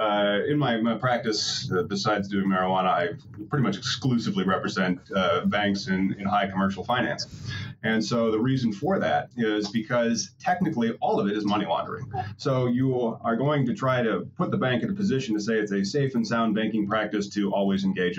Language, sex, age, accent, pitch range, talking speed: English, male, 30-49, American, 105-125 Hz, 200 wpm